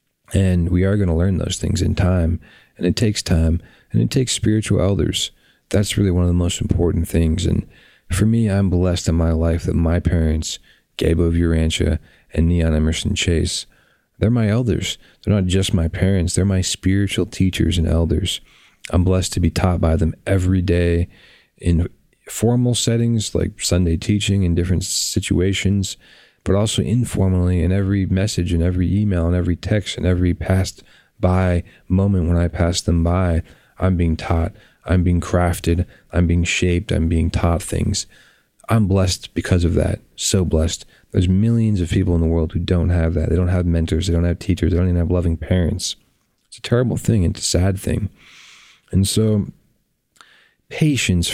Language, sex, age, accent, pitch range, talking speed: English, male, 40-59, American, 85-100 Hz, 180 wpm